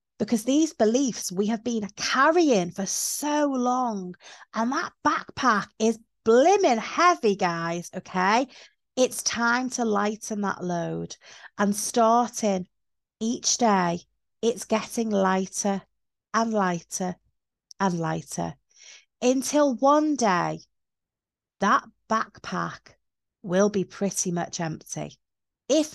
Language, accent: English, British